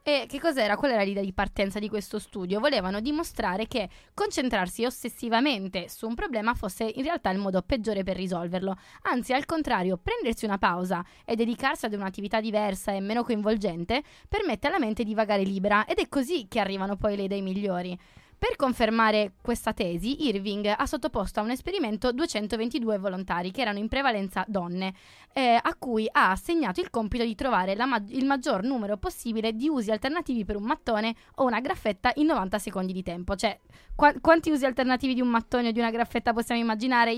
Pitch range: 200-260 Hz